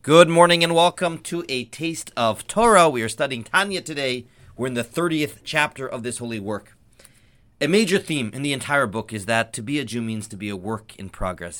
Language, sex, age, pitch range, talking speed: English, male, 40-59, 110-145 Hz, 220 wpm